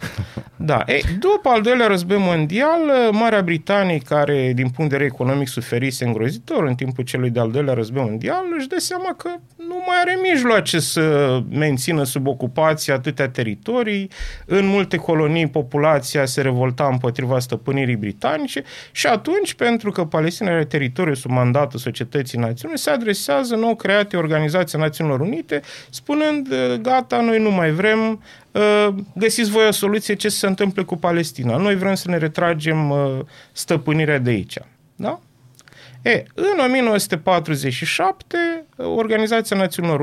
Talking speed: 140 wpm